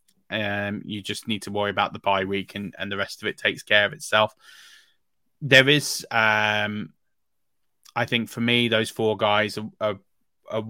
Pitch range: 105-115 Hz